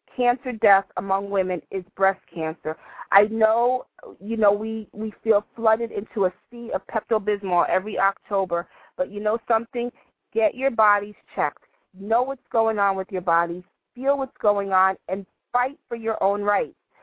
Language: English